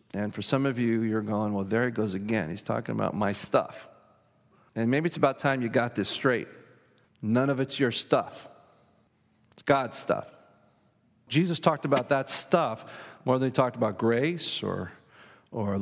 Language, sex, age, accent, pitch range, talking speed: English, male, 50-69, American, 120-160 Hz, 180 wpm